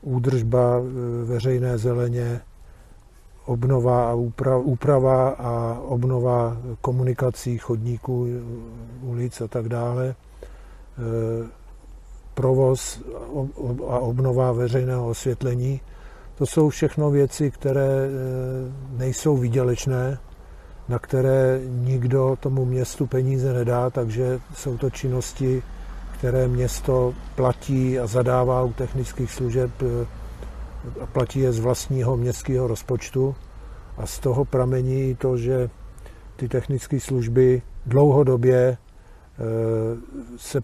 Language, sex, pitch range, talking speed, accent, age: Czech, male, 120-130 Hz, 95 wpm, native, 50-69